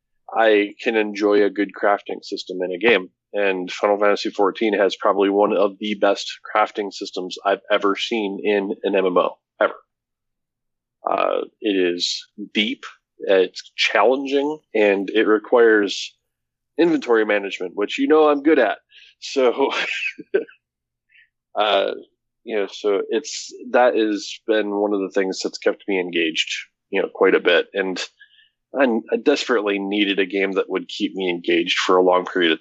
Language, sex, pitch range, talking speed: English, male, 100-150 Hz, 160 wpm